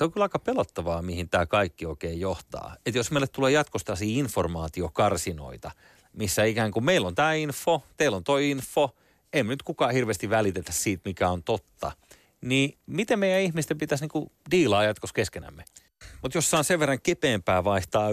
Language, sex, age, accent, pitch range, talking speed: Finnish, male, 30-49, native, 95-135 Hz, 170 wpm